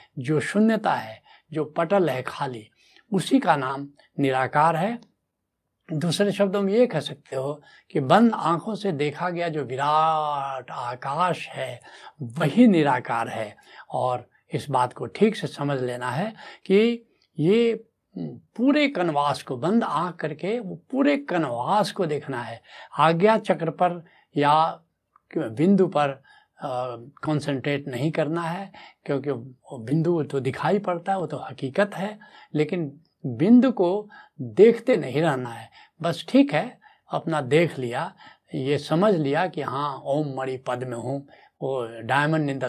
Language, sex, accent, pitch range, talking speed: Hindi, male, native, 135-195 Hz, 140 wpm